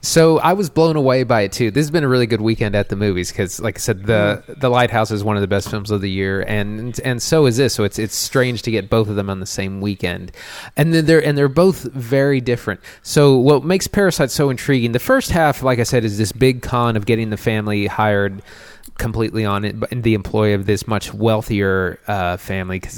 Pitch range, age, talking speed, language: 105-130 Hz, 20-39, 245 wpm, English